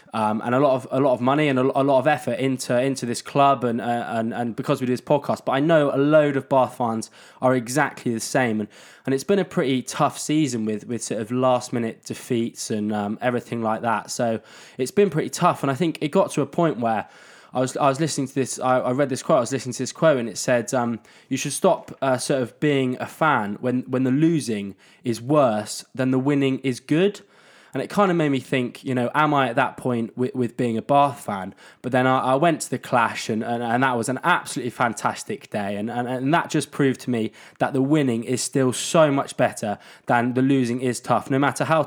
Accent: British